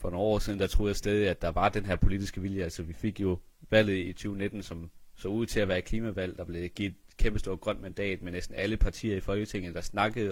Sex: male